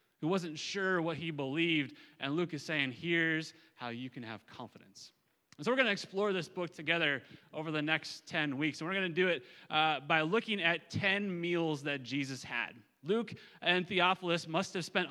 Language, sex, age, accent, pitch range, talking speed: English, male, 30-49, American, 145-175 Hz, 205 wpm